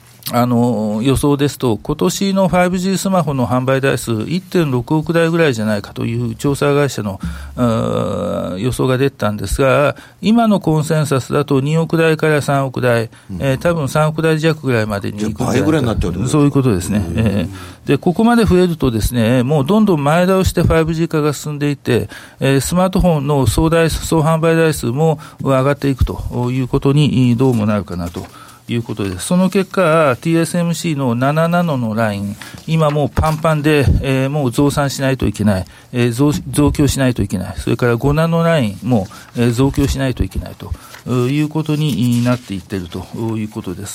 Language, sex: Japanese, male